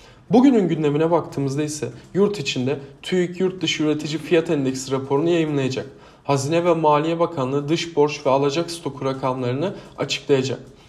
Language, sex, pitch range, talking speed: Turkish, male, 140-170 Hz, 140 wpm